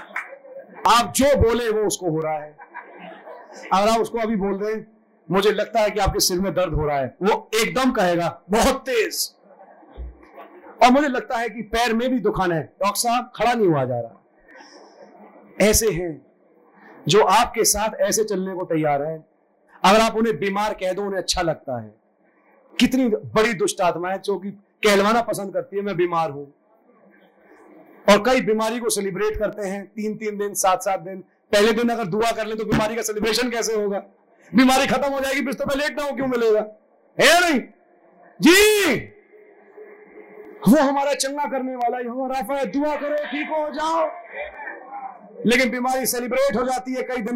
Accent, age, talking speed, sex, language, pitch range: Indian, 40-59, 145 wpm, male, English, 200-265 Hz